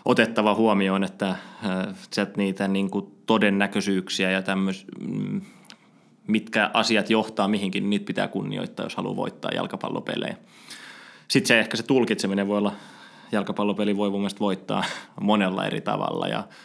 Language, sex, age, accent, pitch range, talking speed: Finnish, male, 20-39, native, 95-105 Hz, 120 wpm